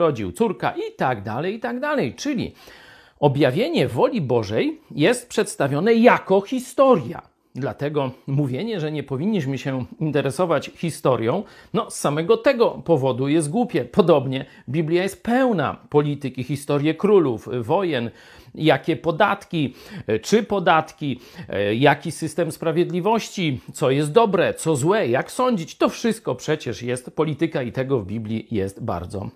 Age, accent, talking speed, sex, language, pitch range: 50-69, native, 130 wpm, male, Polish, 145-215 Hz